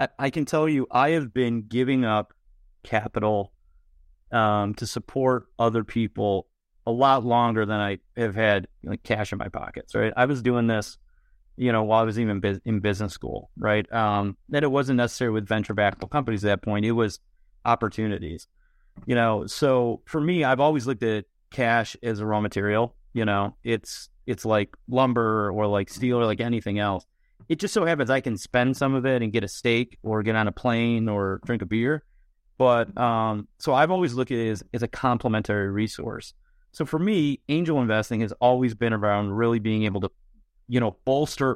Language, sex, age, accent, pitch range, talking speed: English, male, 30-49, American, 105-130 Hz, 195 wpm